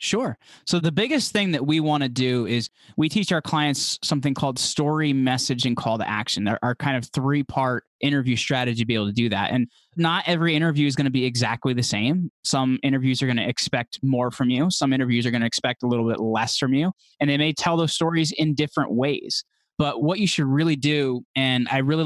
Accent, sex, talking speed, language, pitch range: American, male, 235 wpm, English, 125-155 Hz